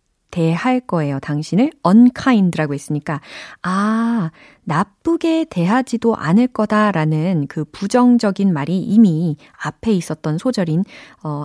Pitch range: 160-225 Hz